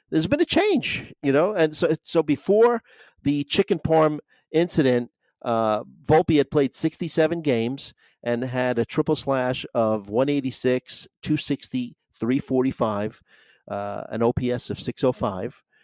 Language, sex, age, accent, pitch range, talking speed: English, male, 50-69, American, 110-140 Hz, 130 wpm